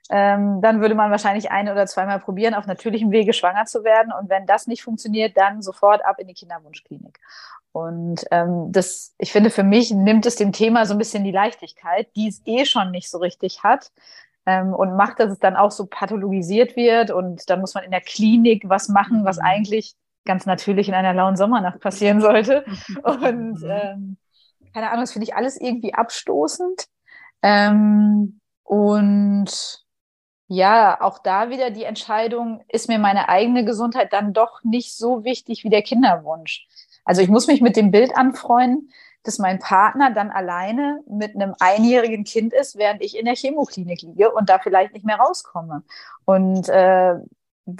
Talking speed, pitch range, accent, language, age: 180 wpm, 190-230 Hz, German, German, 30-49